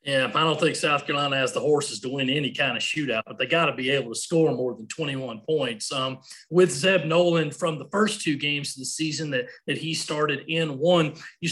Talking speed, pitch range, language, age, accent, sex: 240 wpm, 150-185 Hz, English, 30-49, American, male